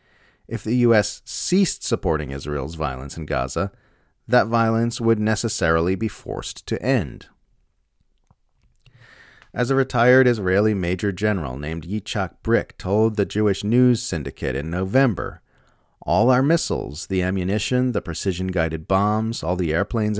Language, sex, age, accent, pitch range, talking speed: English, male, 40-59, American, 85-120 Hz, 130 wpm